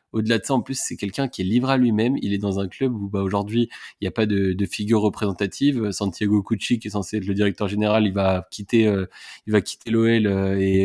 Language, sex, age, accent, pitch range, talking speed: French, male, 20-39, French, 100-115 Hz, 255 wpm